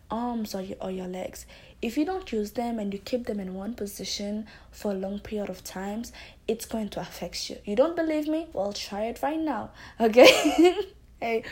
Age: 10-29